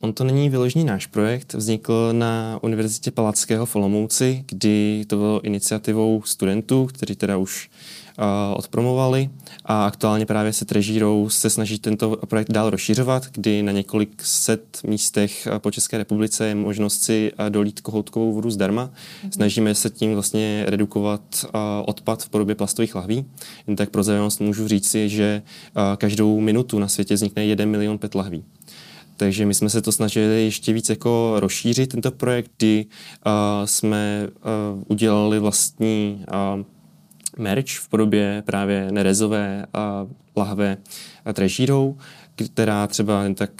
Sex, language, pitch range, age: male, Czech, 105-115 Hz, 20-39